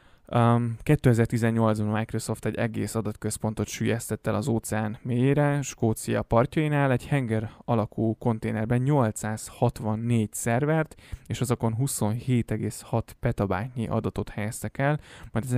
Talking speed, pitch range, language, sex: 110 wpm, 110-120 Hz, Hungarian, male